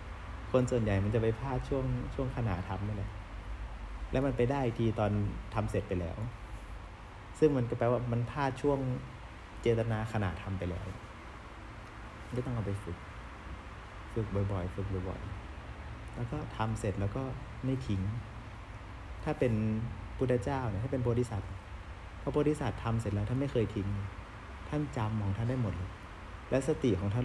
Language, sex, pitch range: Thai, male, 100-125 Hz